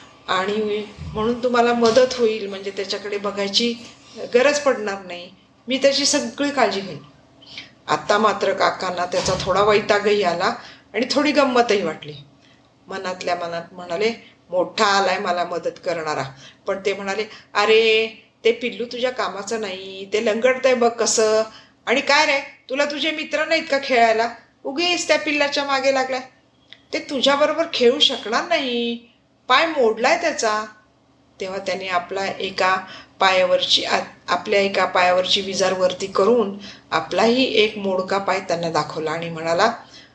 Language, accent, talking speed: Marathi, native, 135 wpm